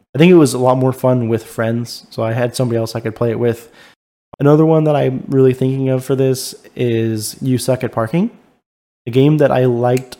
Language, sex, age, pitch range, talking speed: English, male, 20-39, 115-135 Hz, 230 wpm